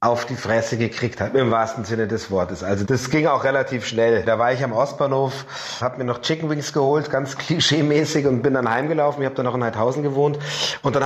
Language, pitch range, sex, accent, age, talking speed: German, 125-150 Hz, male, German, 30-49, 230 wpm